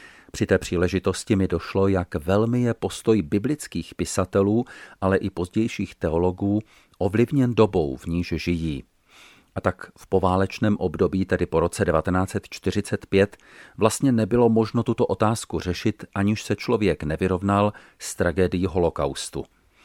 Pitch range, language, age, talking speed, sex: 90-105 Hz, Czech, 40-59, 125 wpm, male